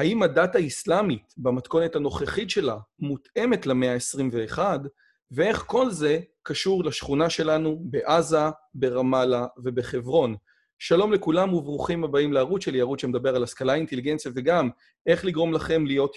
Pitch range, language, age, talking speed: 130-160 Hz, Hebrew, 30-49, 125 wpm